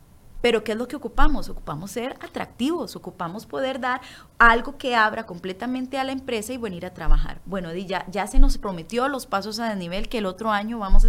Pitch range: 165-225 Hz